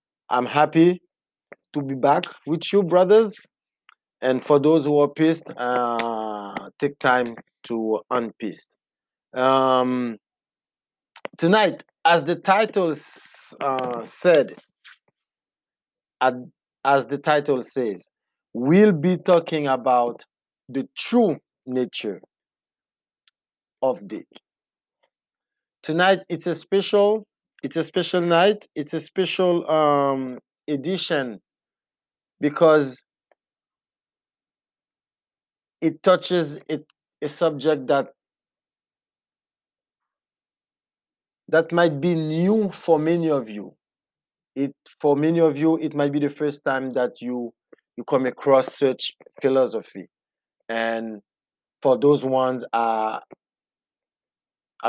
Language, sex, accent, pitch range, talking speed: English, male, French, 130-170 Hz, 95 wpm